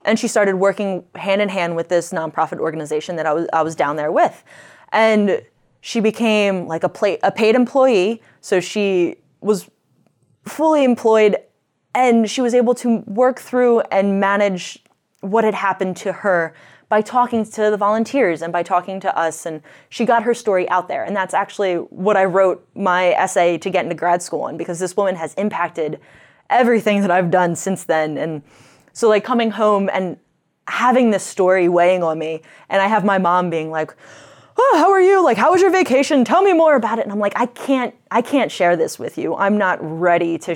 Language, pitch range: English, 175-225 Hz